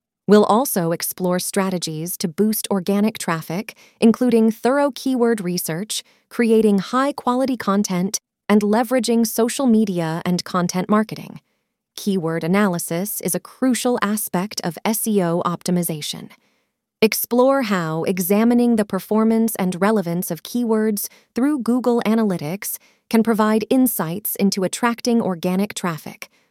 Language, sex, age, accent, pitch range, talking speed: English, female, 30-49, American, 185-230 Hz, 115 wpm